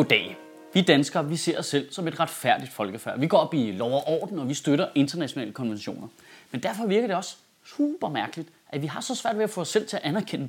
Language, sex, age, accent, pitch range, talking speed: Danish, male, 30-49, native, 155-225 Hz, 240 wpm